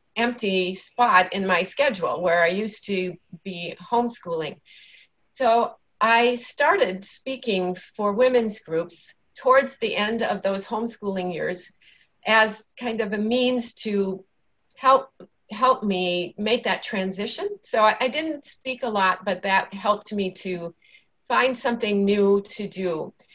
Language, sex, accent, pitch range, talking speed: English, female, American, 190-240 Hz, 135 wpm